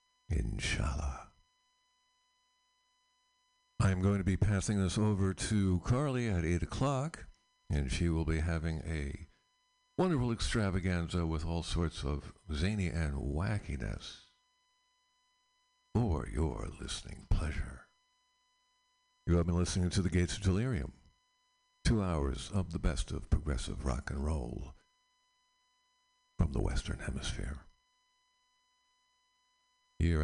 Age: 60-79